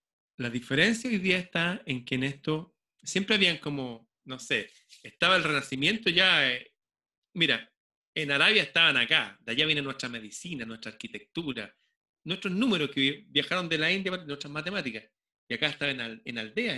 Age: 30-49